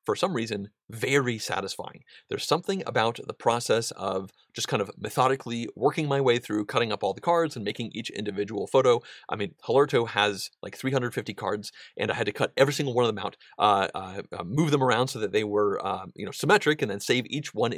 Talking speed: 220 wpm